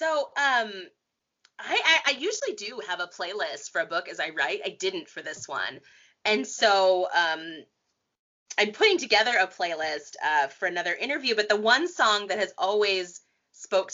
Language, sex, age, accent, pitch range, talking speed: English, female, 20-39, American, 180-235 Hz, 175 wpm